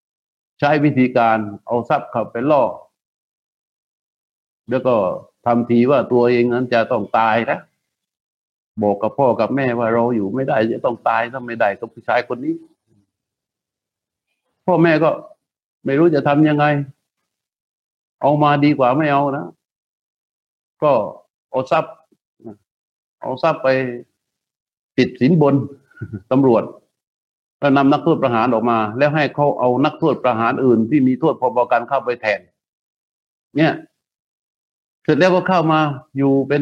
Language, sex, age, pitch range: Thai, male, 60-79, 120-150 Hz